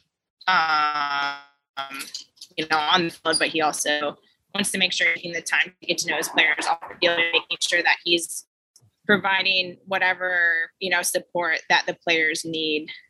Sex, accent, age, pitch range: female, American, 20-39, 160-190 Hz